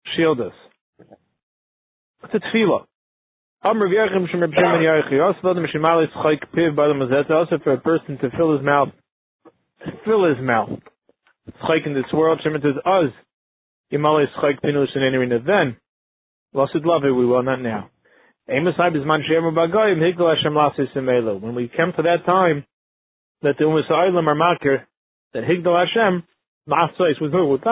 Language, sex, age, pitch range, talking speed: English, male, 30-49, 140-175 Hz, 85 wpm